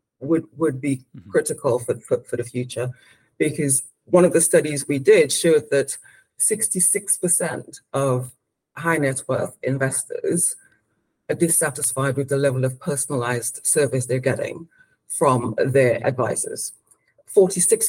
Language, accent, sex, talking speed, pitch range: English, British, female, 130 wpm, 145-185 Hz